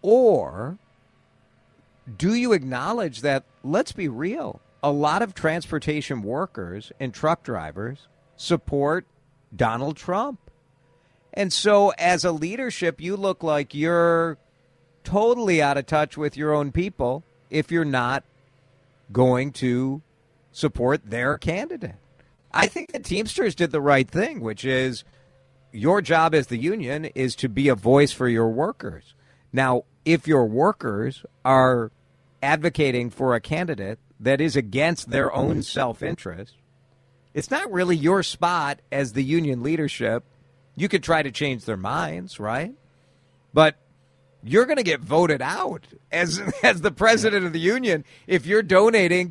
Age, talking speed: 50-69, 140 wpm